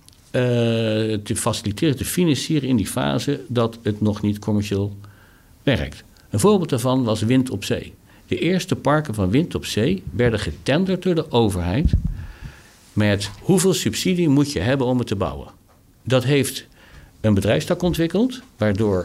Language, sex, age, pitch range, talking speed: Dutch, male, 60-79, 100-140 Hz, 155 wpm